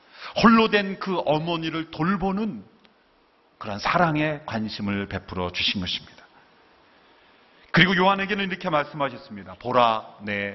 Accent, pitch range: native, 120-170 Hz